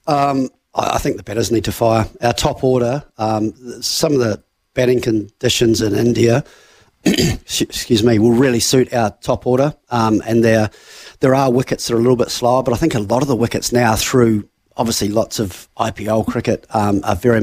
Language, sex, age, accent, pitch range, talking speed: English, male, 30-49, Australian, 110-125 Hz, 195 wpm